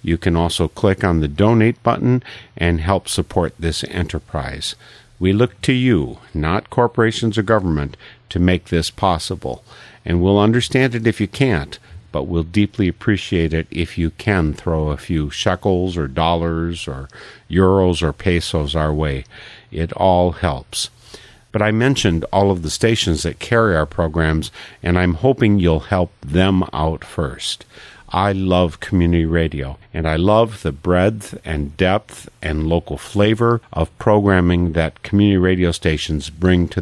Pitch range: 80-100 Hz